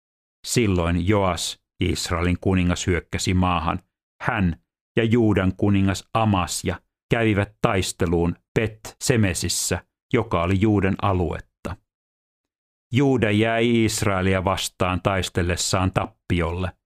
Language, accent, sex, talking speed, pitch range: Finnish, native, male, 85 wpm, 90-110 Hz